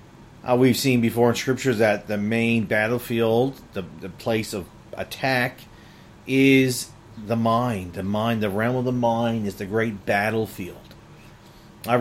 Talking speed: 150 wpm